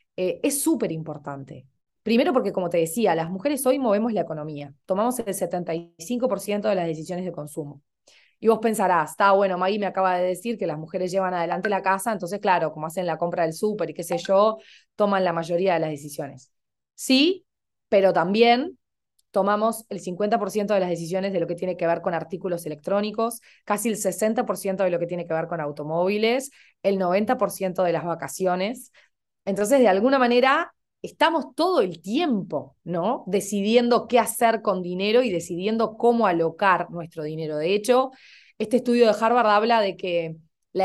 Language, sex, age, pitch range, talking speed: Spanish, female, 20-39, 175-235 Hz, 180 wpm